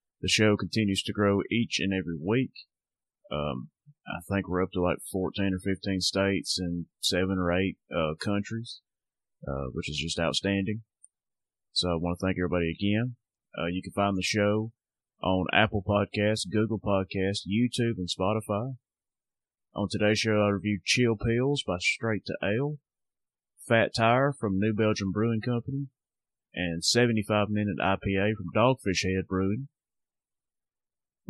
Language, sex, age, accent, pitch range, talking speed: English, male, 30-49, American, 95-110 Hz, 150 wpm